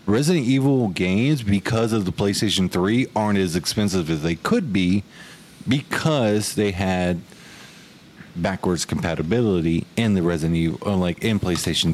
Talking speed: 135 wpm